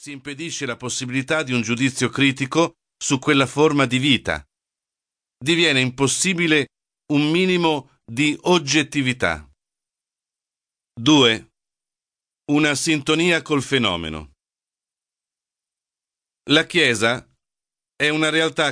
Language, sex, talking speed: Italian, male, 95 wpm